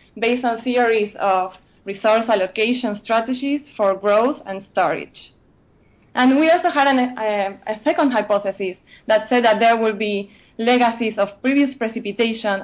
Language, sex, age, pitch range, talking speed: English, female, 20-39, 205-245 Hz, 140 wpm